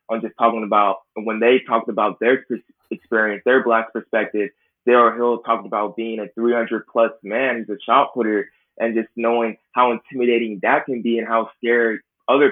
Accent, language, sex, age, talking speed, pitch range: American, English, male, 20-39, 180 wpm, 115-135 Hz